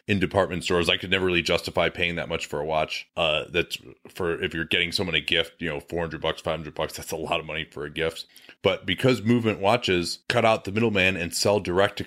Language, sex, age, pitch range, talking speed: English, male, 30-49, 85-105 Hz, 245 wpm